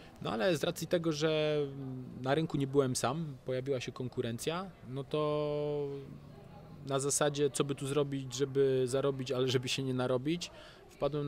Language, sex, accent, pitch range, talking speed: Polish, male, native, 125-150 Hz, 160 wpm